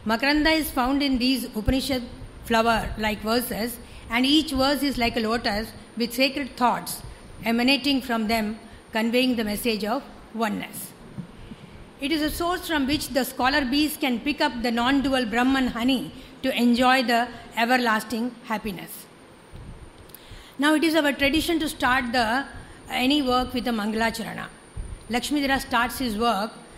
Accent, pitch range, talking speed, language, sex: Indian, 230-275 Hz, 145 wpm, English, female